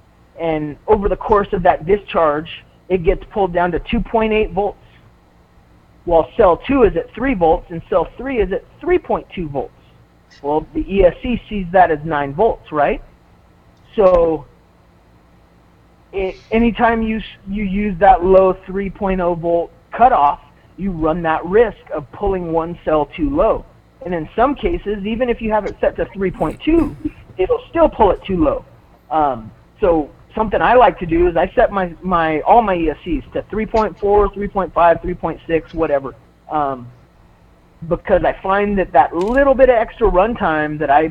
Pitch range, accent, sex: 155-210 Hz, American, male